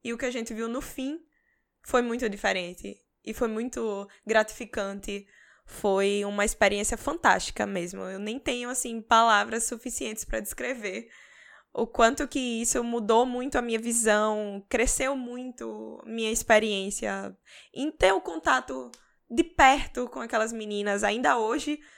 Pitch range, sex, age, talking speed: 205-245 Hz, female, 10-29, 145 wpm